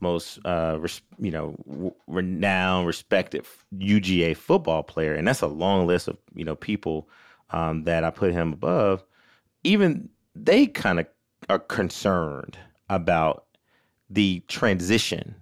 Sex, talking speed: male, 135 wpm